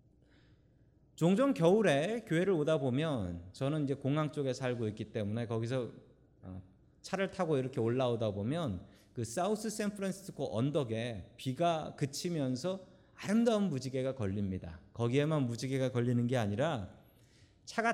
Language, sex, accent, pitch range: Korean, male, native, 110-170 Hz